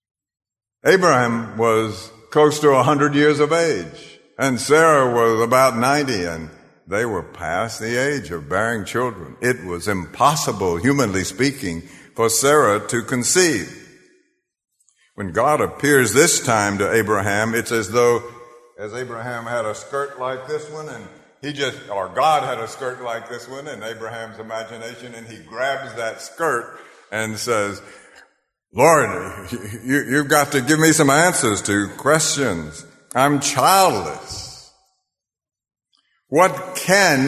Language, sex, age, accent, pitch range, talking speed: English, male, 60-79, American, 110-150 Hz, 140 wpm